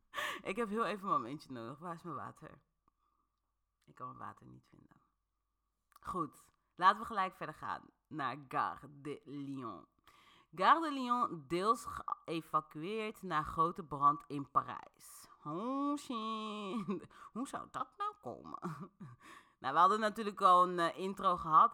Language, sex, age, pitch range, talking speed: Dutch, female, 30-49, 160-235 Hz, 145 wpm